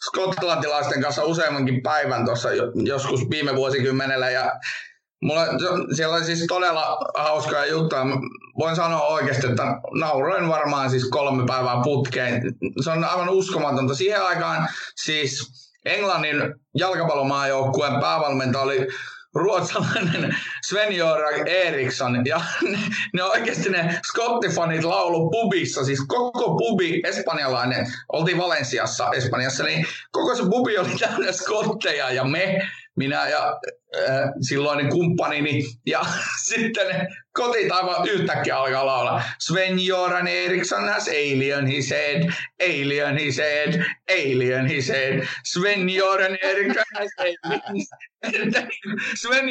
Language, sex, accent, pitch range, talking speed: Finnish, male, native, 140-190 Hz, 110 wpm